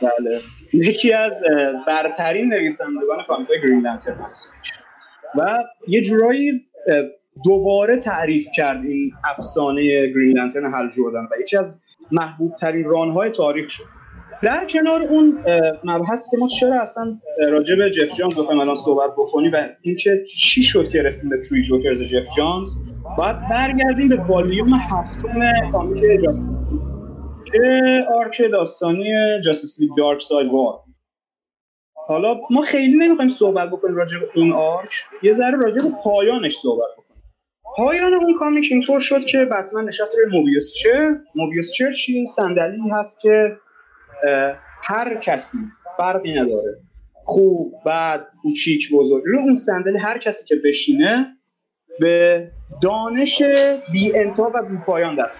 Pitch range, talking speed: 150-250 Hz, 135 wpm